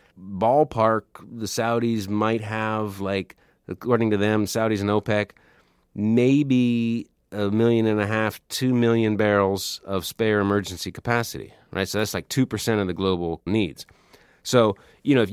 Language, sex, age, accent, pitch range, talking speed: English, male, 30-49, American, 95-115 Hz, 155 wpm